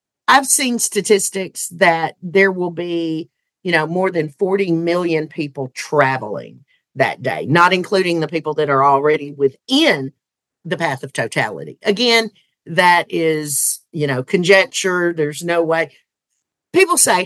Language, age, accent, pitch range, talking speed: English, 50-69, American, 155-210 Hz, 140 wpm